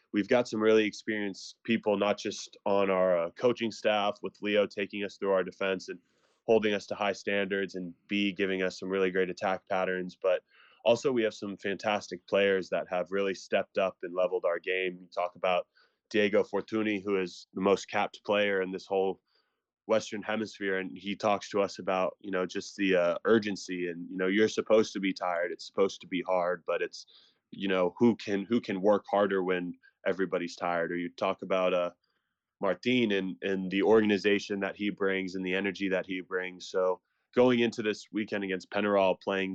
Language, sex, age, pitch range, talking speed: English, male, 20-39, 95-105 Hz, 200 wpm